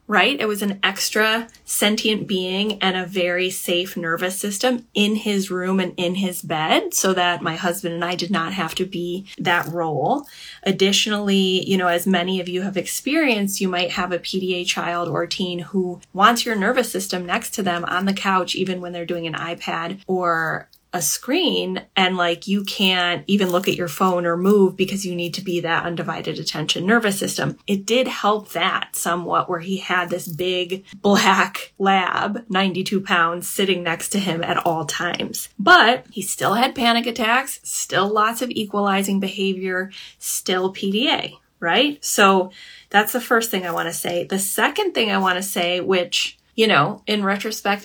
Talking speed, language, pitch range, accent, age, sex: 185 wpm, English, 175-205 Hz, American, 20-39, female